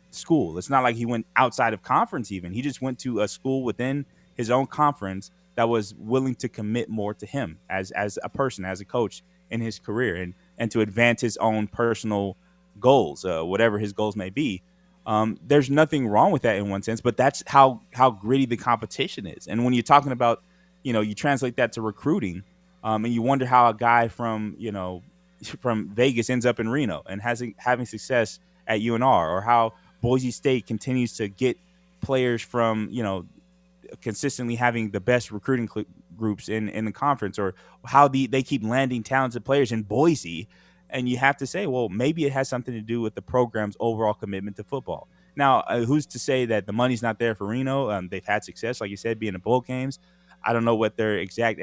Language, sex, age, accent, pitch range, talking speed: English, male, 20-39, American, 110-130 Hz, 210 wpm